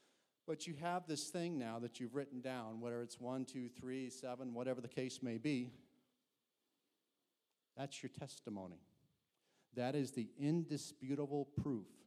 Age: 50-69